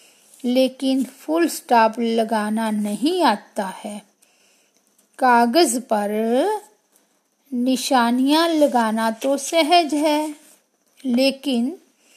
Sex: female